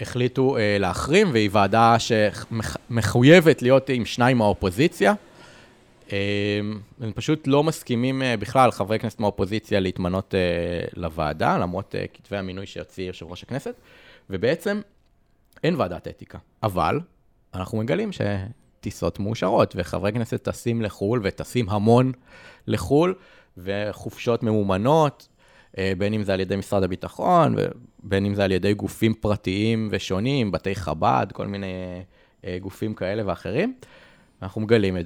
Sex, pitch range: male, 95-120 Hz